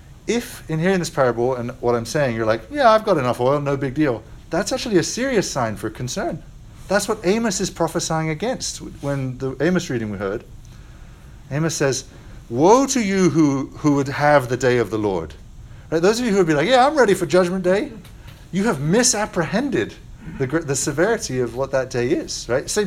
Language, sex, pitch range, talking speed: English, male, 125-180 Hz, 205 wpm